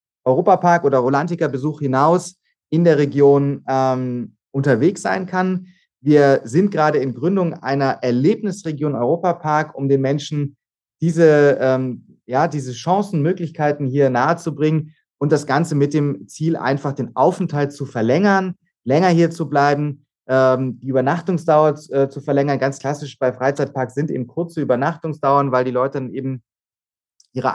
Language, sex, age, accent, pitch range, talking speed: German, male, 30-49, German, 130-150 Hz, 140 wpm